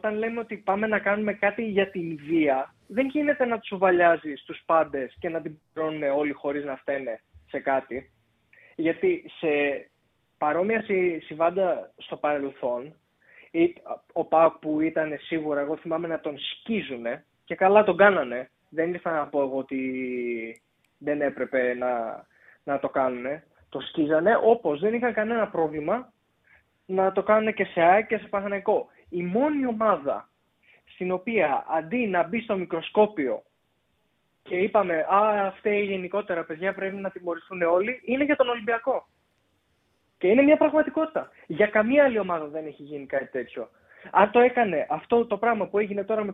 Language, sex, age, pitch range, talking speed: Greek, male, 20-39, 150-215 Hz, 160 wpm